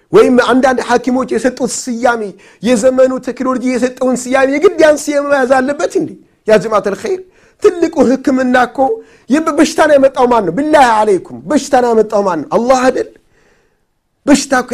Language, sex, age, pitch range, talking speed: Amharic, male, 50-69, 215-275 Hz, 125 wpm